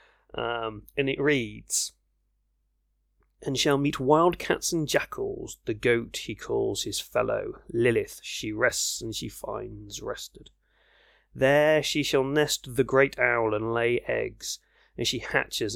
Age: 30-49